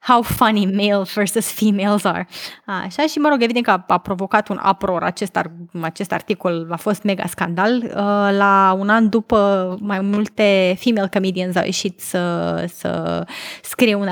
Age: 20-39